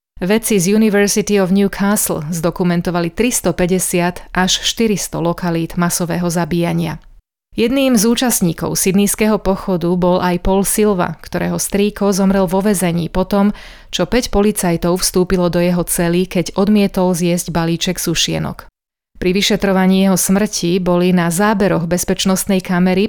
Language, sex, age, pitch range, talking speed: Slovak, female, 30-49, 175-200 Hz, 125 wpm